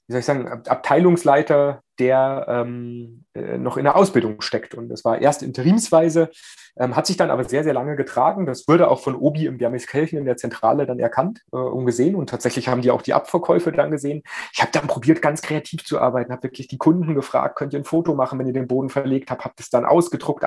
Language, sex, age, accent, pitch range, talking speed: German, male, 30-49, German, 125-150 Hz, 235 wpm